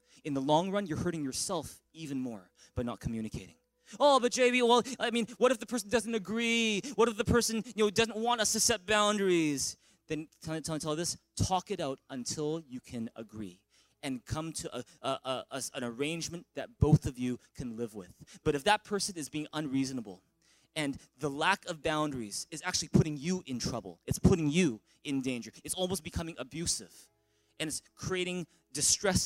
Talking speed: 195 wpm